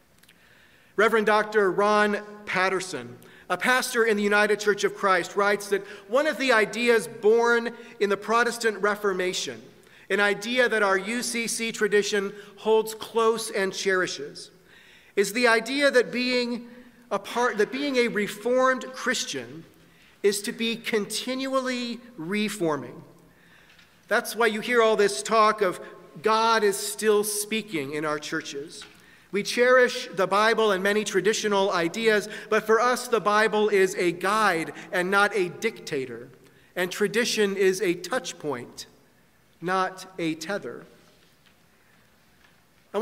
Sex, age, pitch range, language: male, 40-59, 200-240 Hz, English